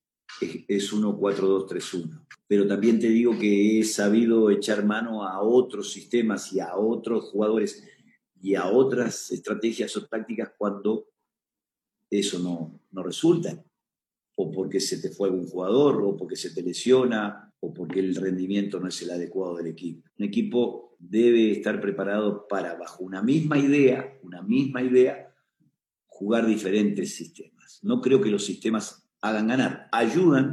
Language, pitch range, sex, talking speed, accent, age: Spanish, 100-130 Hz, male, 145 wpm, Argentinian, 50-69